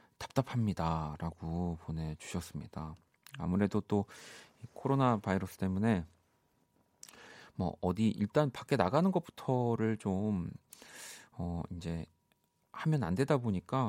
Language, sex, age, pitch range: Korean, male, 40-59, 90-130 Hz